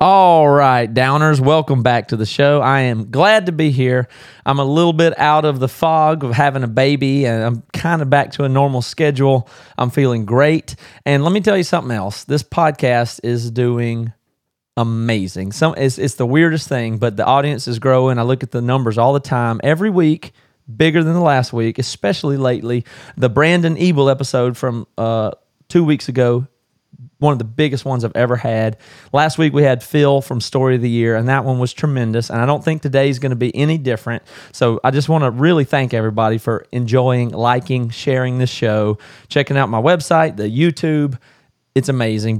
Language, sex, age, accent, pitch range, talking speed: English, male, 30-49, American, 120-155 Hz, 200 wpm